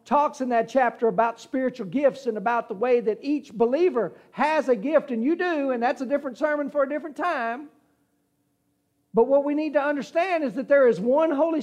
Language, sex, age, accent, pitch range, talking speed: English, male, 50-69, American, 195-275 Hz, 210 wpm